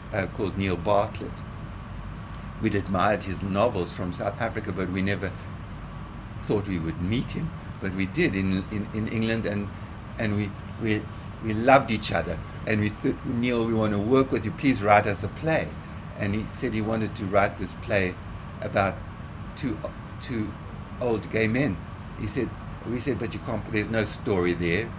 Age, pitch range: 60-79, 95-115 Hz